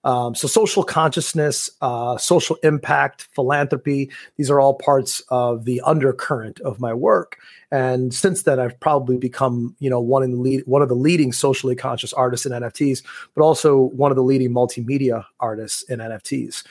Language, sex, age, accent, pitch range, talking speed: English, male, 30-49, American, 125-145 Hz, 165 wpm